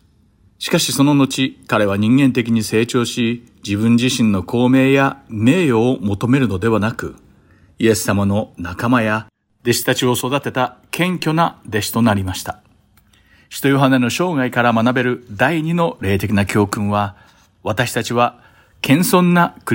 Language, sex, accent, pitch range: Japanese, male, native, 100-135 Hz